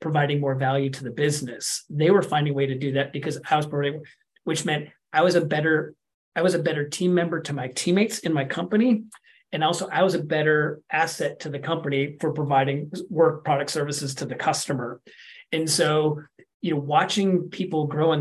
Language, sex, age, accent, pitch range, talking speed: English, male, 30-49, American, 140-165 Hz, 205 wpm